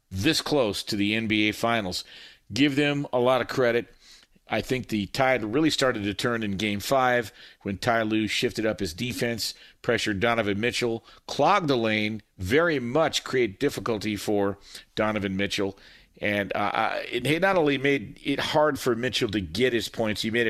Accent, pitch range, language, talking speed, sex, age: American, 105-140 Hz, English, 175 wpm, male, 50-69